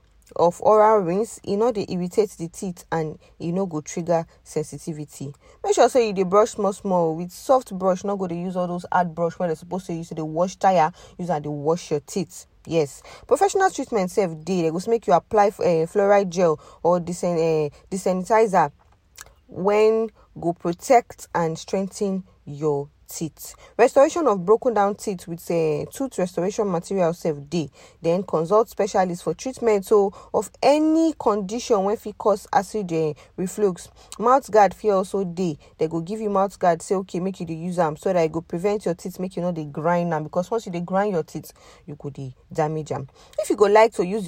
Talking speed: 210 wpm